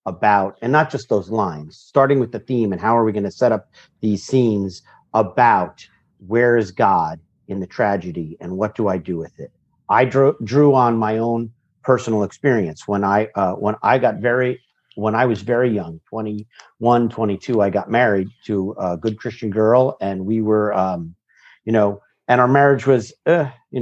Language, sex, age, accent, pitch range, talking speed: English, male, 50-69, American, 100-125 Hz, 190 wpm